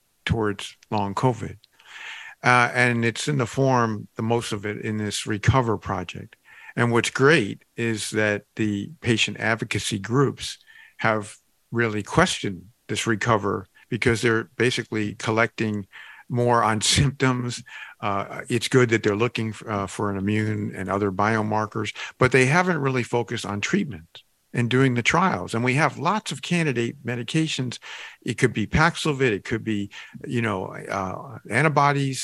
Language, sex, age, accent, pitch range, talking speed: English, male, 50-69, American, 110-135 Hz, 150 wpm